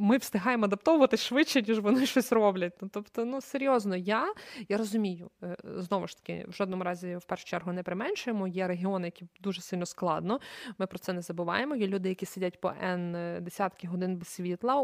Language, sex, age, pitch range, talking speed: Ukrainian, female, 20-39, 180-225 Hz, 190 wpm